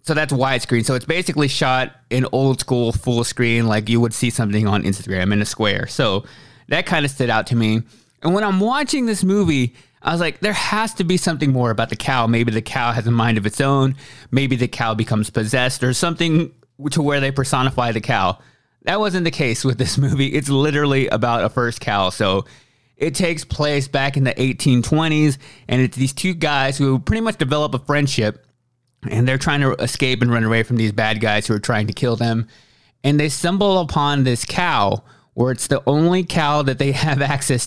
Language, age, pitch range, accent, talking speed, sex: English, 20-39, 115-145 Hz, American, 215 wpm, male